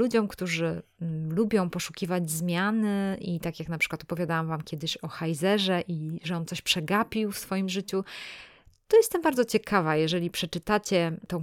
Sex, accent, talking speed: female, native, 160 wpm